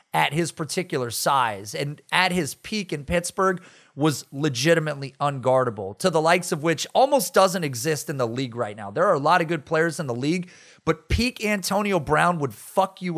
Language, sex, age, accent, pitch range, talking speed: English, male, 30-49, American, 150-195 Hz, 195 wpm